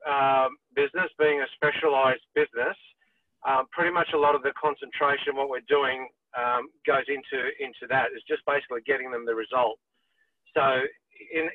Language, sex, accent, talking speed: English, male, Australian, 160 wpm